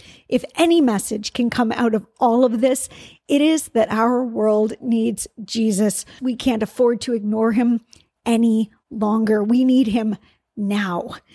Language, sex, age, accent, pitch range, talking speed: English, female, 50-69, American, 215-270 Hz, 155 wpm